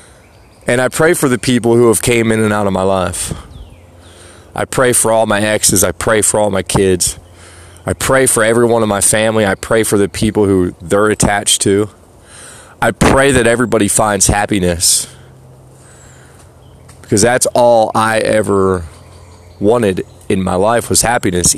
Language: English